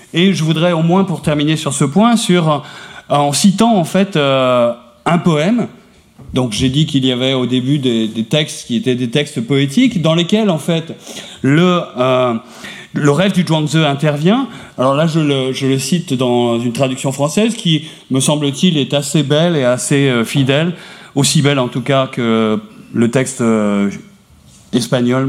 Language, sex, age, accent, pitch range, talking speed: French, male, 40-59, French, 130-180 Hz, 175 wpm